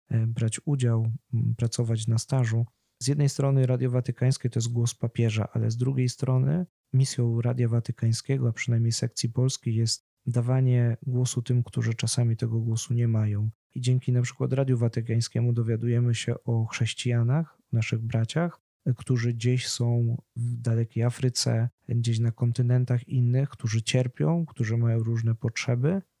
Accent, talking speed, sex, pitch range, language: native, 145 wpm, male, 115-135 Hz, Polish